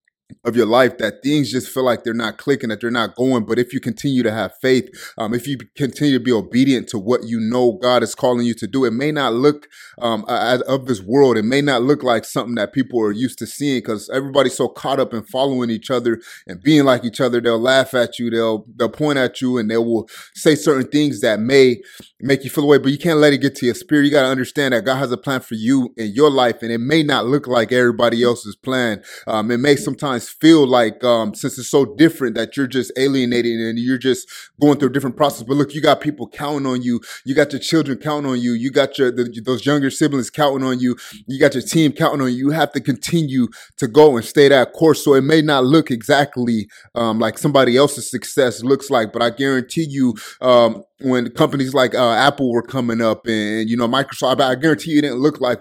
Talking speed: 245 wpm